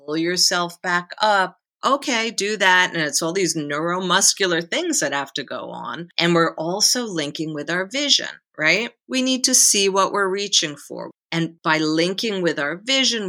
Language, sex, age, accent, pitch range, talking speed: English, female, 40-59, American, 155-215 Hz, 175 wpm